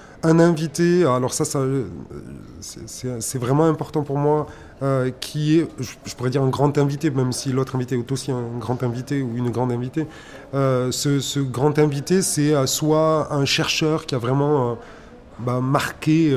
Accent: French